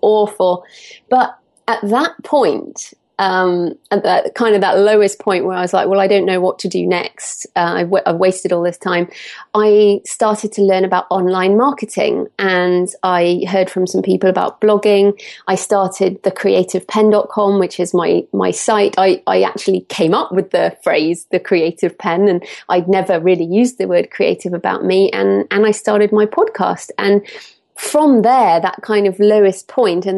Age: 30-49